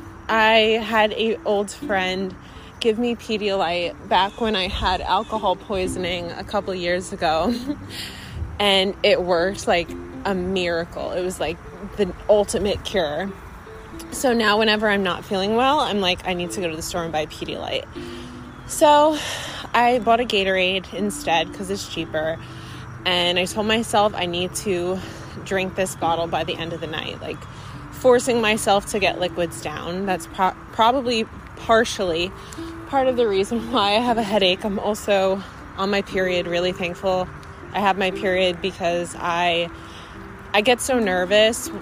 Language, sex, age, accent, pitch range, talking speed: English, female, 20-39, American, 175-215 Hz, 160 wpm